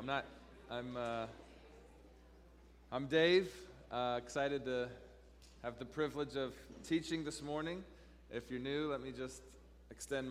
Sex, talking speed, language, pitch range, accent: male, 135 wpm, English, 100-130 Hz, American